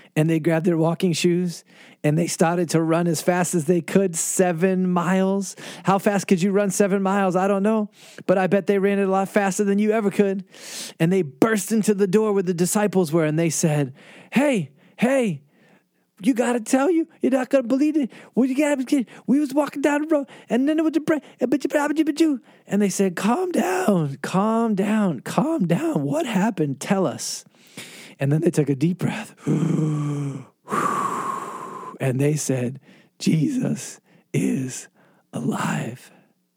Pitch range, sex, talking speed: 145-215 Hz, male, 170 wpm